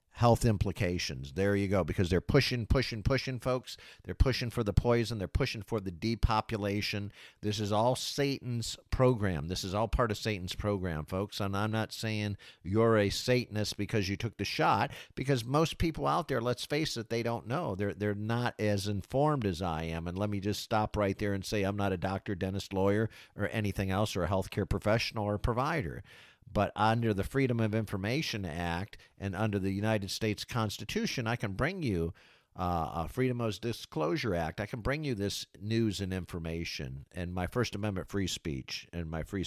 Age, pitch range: 50-69, 95-115 Hz